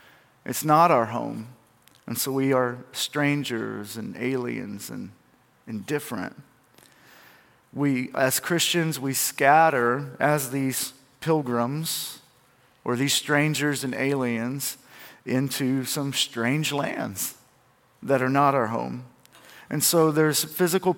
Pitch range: 130-155 Hz